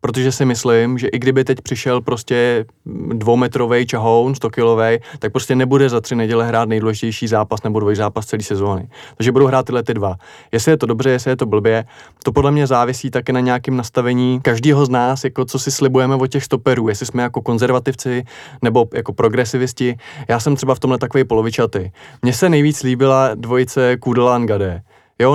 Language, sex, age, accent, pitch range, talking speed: Czech, male, 20-39, native, 115-130 Hz, 190 wpm